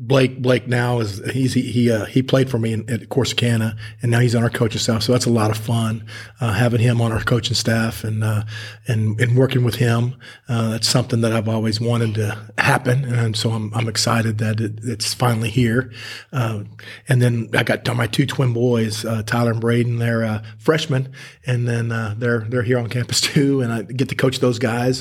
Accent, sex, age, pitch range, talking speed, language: American, male, 40-59, 115-125 Hz, 220 wpm, English